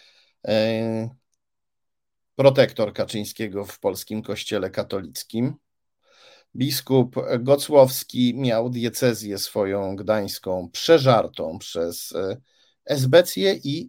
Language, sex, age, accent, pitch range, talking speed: Polish, male, 50-69, native, 105-135 Hz, 70 wpm